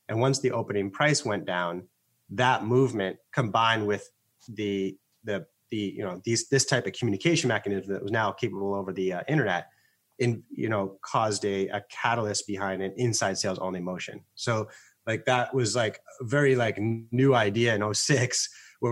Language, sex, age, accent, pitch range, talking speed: English, male, 30-49, American, 100-130 Hz, 180 wpm